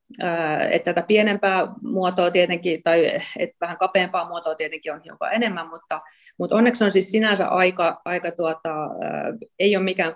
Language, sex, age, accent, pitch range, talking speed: Finnish, female, 30-49, native, 165-195 Hz, 155 wpm